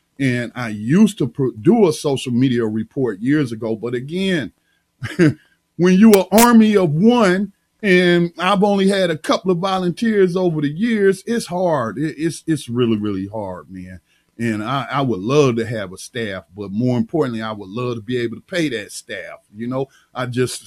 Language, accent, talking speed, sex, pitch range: English, American, 185 wpm, male, 115-165 Hz